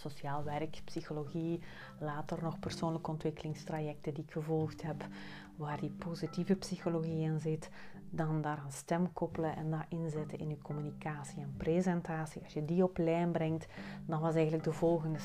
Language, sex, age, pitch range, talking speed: Dutch, female, 30-49, 160-185 Hz, 160 wpm